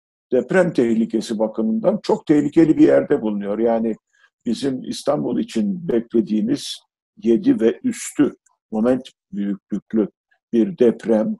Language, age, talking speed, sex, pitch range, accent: Turkish, 50-69, 105 wpm, male, 110-175 Hz, native